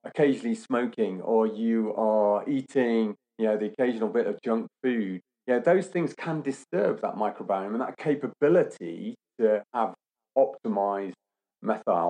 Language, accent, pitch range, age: English, British, 105-145 Hz, 40-59